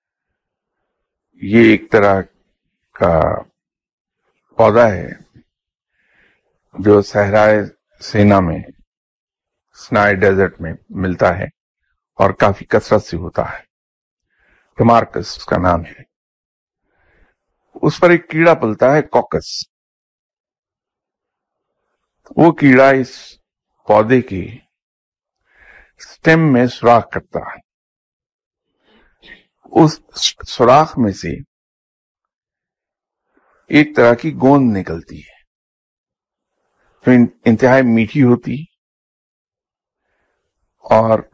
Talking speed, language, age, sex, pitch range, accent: 85 wpm, English, 50-69, male, 95-130 Hz, Indian